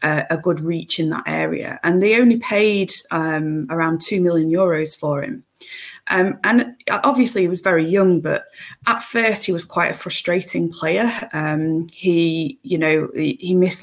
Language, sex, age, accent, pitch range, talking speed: English, female, 20-39, British, 160-190 Hz, 170 wpm